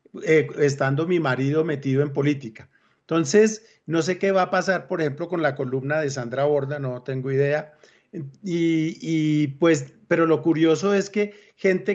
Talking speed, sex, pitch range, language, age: 165 wpm, male, 145-185 Hz, English, 50-69